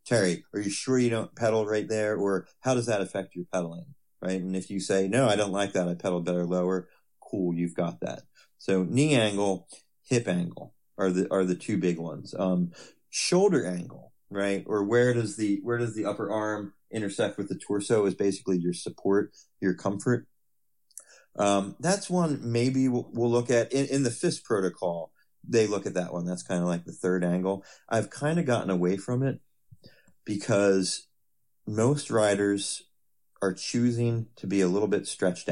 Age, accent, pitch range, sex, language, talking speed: 30-49, American, 90-115 Hz, male, English, 190 wpm